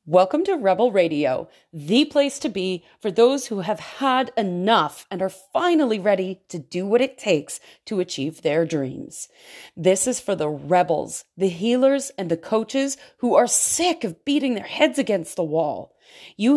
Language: English